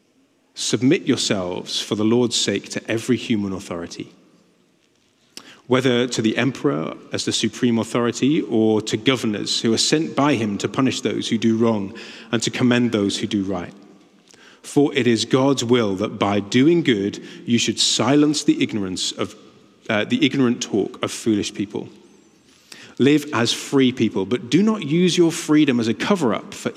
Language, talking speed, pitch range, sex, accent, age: English, 170 wpm, 105-130 Hz, male, British, 30-49